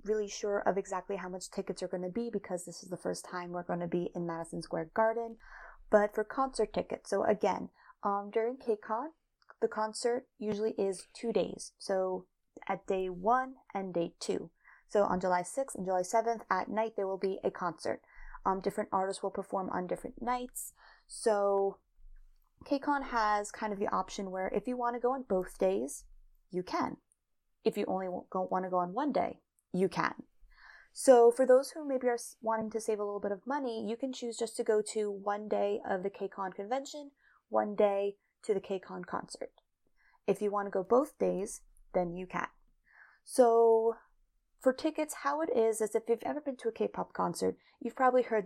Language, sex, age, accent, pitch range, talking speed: English, female, 20-39, American, 190-235 Hz, 195 wpm